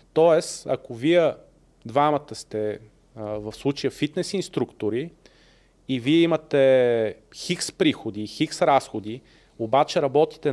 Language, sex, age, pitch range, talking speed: Bulgarian, male, 30-49, 135-175 Hz, 110 wpm